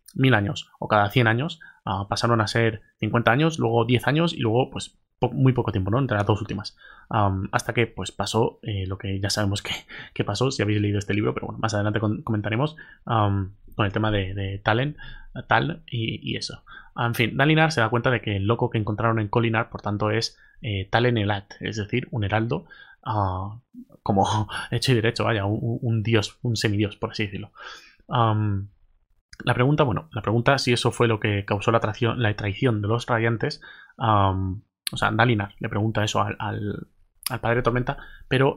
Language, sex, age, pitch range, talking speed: Spanish, male, 20-39, 105-120 Hz, 210 wpm